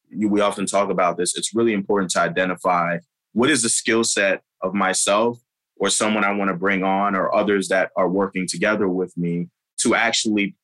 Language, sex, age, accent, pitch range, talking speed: English, male, 20-39, American, 95-110 Hz, 190 wpm